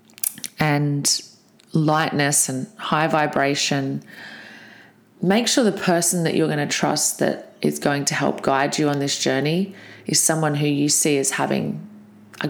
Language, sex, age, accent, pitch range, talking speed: English, female, 30-49, Australian, 140-175 Hz, 155 wpm